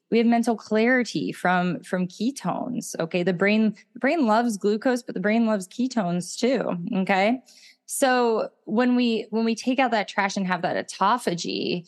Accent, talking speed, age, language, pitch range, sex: American, 170 wpm, 20-39, English, 185-240 Hz, female